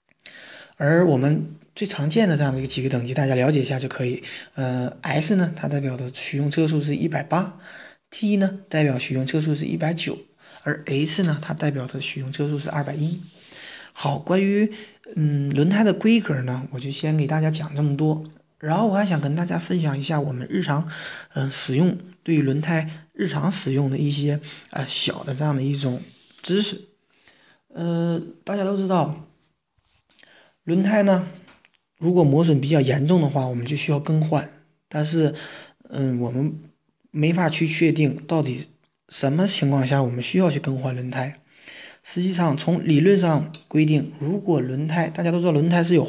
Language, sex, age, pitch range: Chinese, male, 20-39, 140-170 Hz